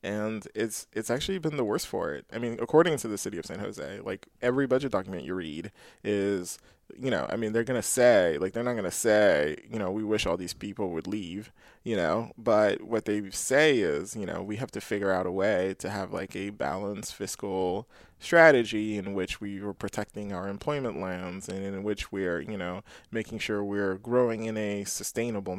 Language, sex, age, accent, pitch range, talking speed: English, male, 20-39, American, 95-120 Hz, 215 wpm